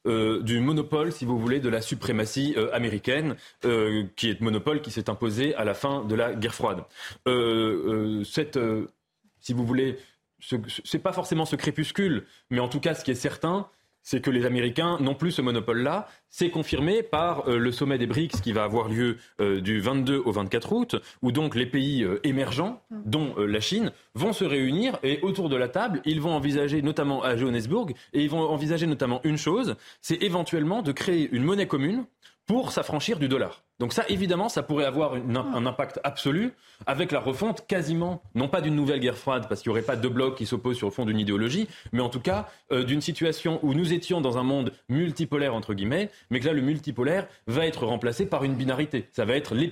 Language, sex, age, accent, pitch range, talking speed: French, male, 30-49, French, 120-160 Hz, 210 wpm